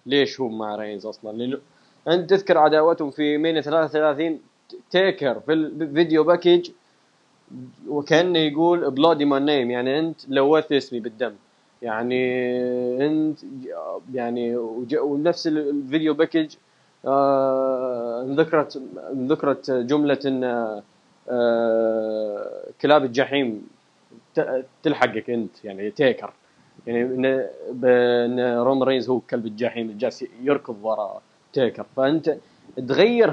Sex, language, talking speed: male, Arabic, 95 wpm